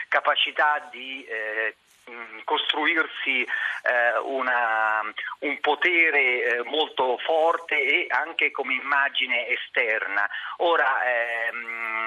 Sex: male